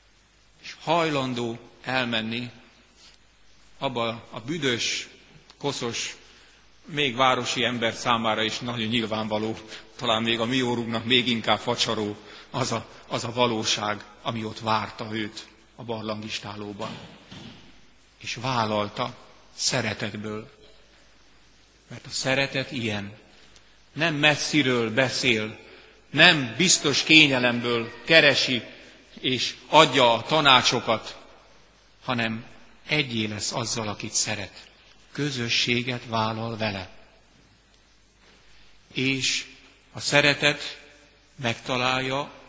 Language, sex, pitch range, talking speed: Hungarian, male, 110-130 Hz, 90 wpm